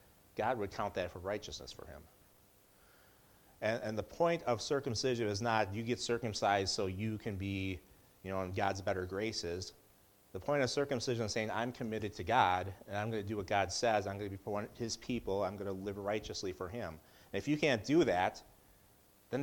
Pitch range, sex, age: 100-120 Hz, male, 30-49